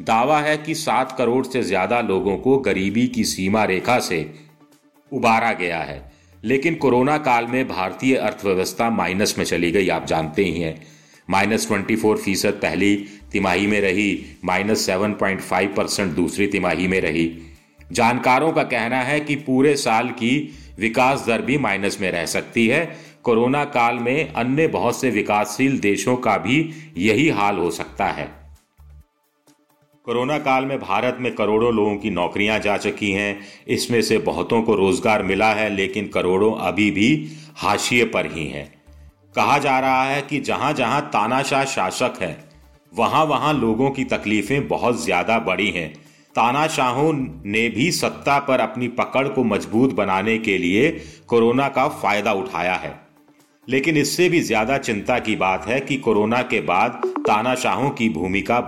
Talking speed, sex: 155 wpm, male